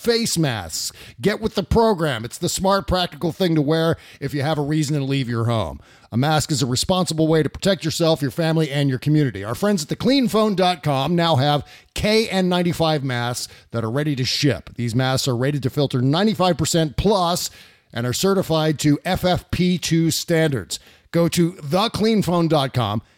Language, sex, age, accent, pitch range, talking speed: English, male, 50-69, American, 135-180 Hz, 175 wpm